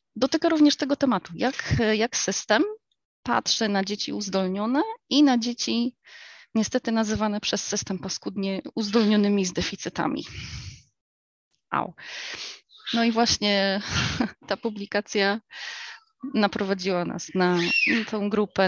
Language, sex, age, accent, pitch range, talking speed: Polish, female, 20-39, native, 185-240 Hz, 105 wpm